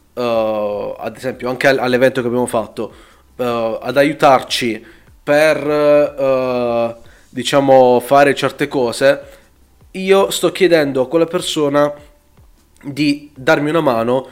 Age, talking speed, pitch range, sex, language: 20-39, 100 wpm, 120-155 Hz, male, Italian